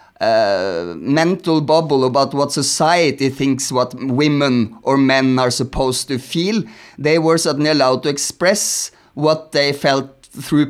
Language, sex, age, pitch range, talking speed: English, male, 30-49, 135-165 Hz, 140 wpm